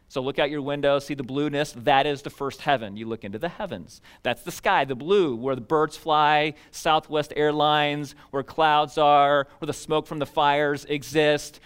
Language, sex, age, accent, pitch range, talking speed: English, male, 40-59, American, 145-190 Hz, 200 wpm